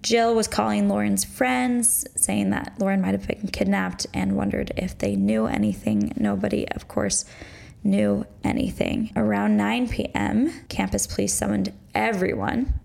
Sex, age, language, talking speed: female, 10-29, English, 140 wpm